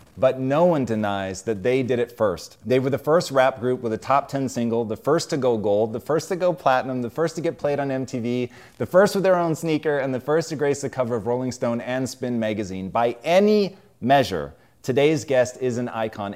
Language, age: English, 30-49